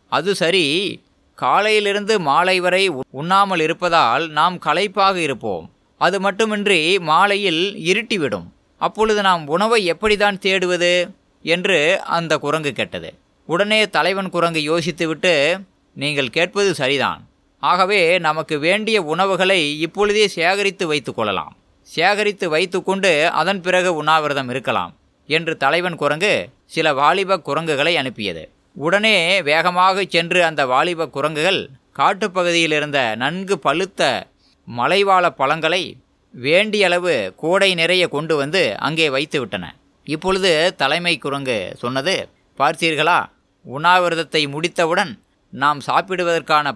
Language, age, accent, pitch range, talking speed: Tamil, 20-39, native, 150-195 Hz, 110 wpm